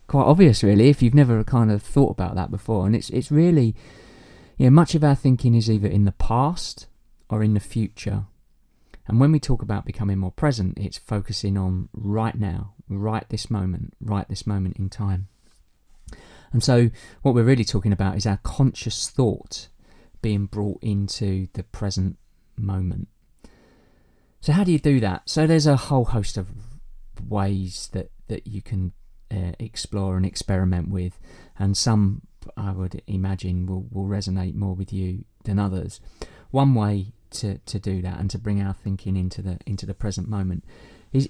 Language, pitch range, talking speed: English, 95-115 Hz, 175 wpm